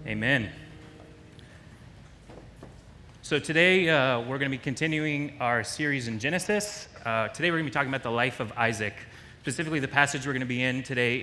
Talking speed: 180 wpm